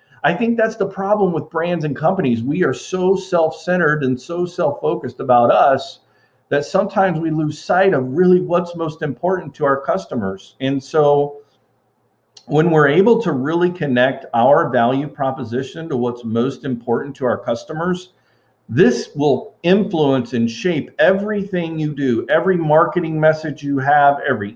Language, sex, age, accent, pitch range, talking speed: English, male, 50-69, American, 130-160 Hz, 155 wpm